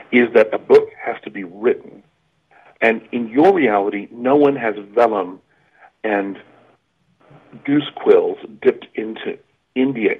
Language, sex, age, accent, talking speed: English, male, 50-69, American, 130 wpm